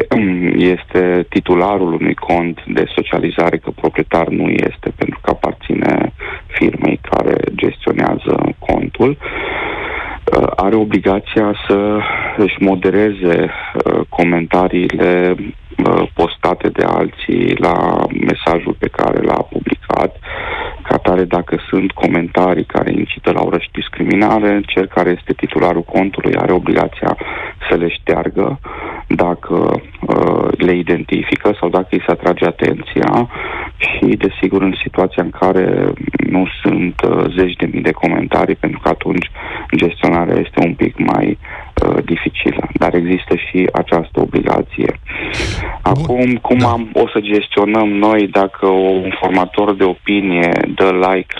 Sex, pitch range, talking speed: male, 90-105 Hz, 115 wpm